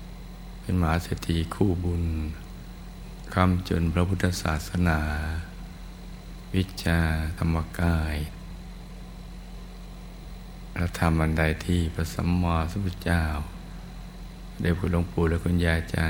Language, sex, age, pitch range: Thai, male, 60-79, 80-90 Hz